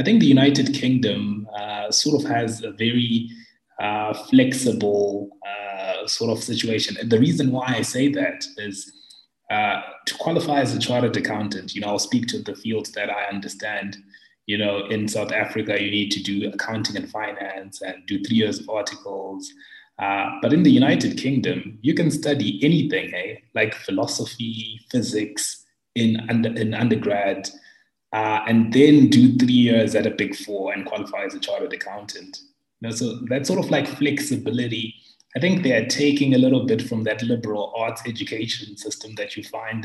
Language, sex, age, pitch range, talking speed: English, male, 20-39, 105-145 Hz, 180 wpm